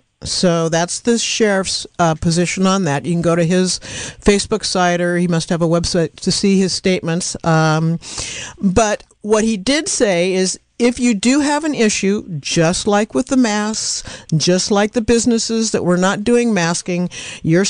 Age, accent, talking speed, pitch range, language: 50-69, American, 180 wpm, 170-220 Hz, English